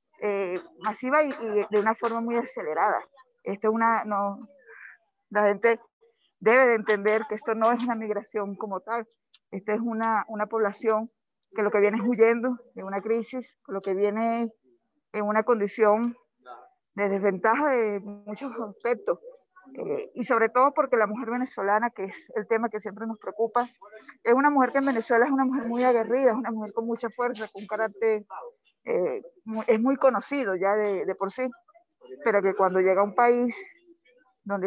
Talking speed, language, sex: 180 wpm, Spanish, female